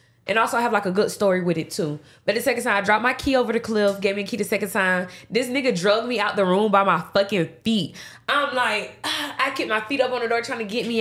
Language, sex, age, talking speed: English, female, 20-39, 295 wpm